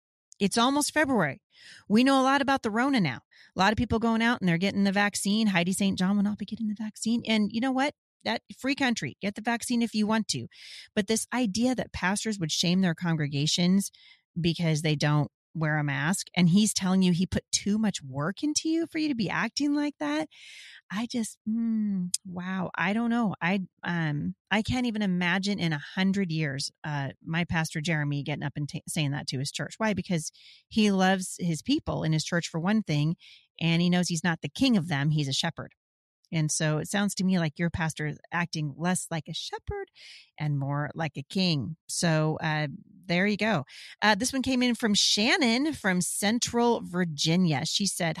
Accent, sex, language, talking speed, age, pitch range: American, female, English, 210 wpm, 30-49, 160-220 Hz